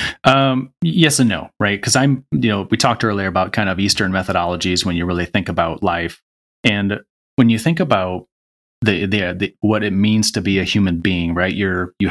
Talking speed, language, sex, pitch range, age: 210 wpm, English, male, 95-110 Hz, 30-49